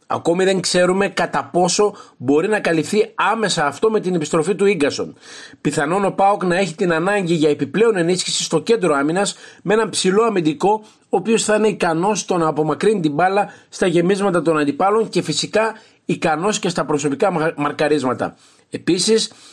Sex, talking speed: male, 165 wpm